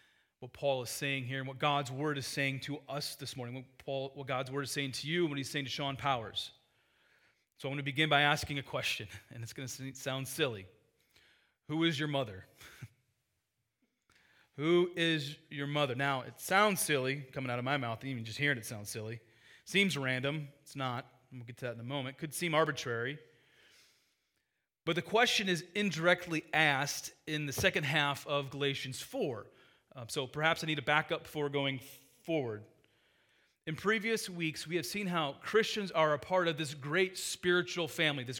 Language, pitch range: English, 135-170 Hz